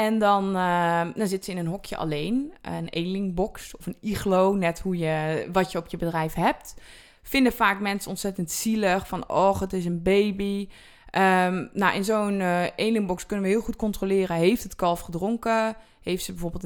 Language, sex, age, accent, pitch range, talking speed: Dutch, female, 20-39, Dutch, 175-215 Hz, 175 wpm